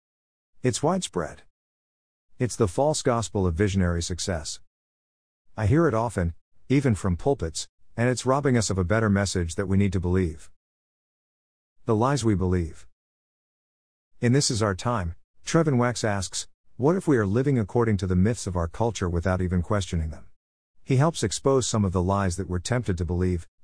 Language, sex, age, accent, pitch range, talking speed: English, male, 50-69, American, 85-115 Hz, 175 wpm